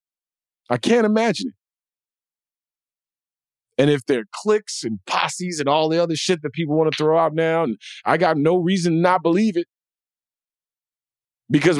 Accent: American